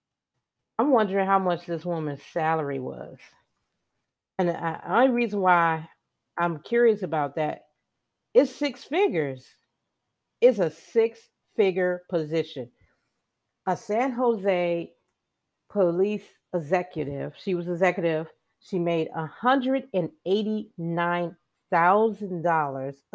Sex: female